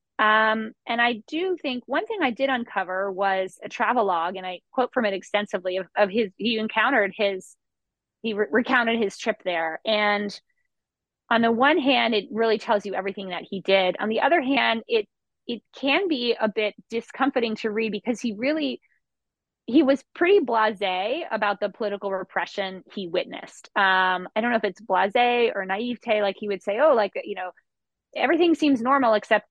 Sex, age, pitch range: female, 20-39, 185-235 Hz